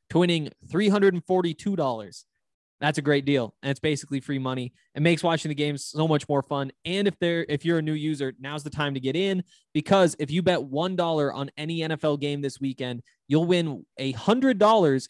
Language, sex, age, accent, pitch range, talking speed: English, male, 20-39, American, 135-165 Hz, 210 wpm